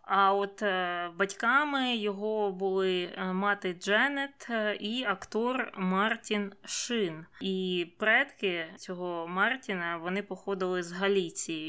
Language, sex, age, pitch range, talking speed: Ukrainian, female, 20-39, 180-210 Hz, 100 wpm